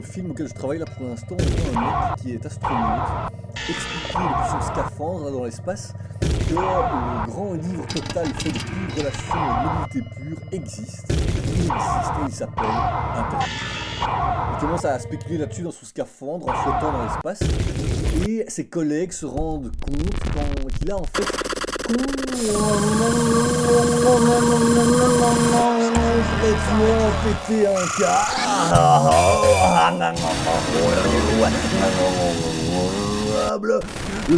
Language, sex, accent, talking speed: English, male, French, 110 wpm